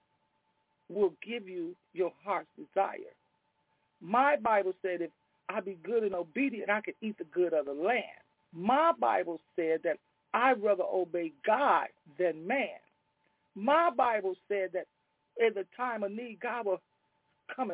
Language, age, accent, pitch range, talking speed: English, 50-69, American, 150-230 Hz, 150 wpm